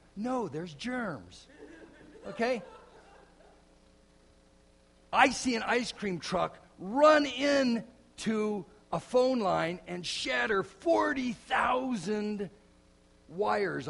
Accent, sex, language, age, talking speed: American, male, English, 50-69, 80 wpm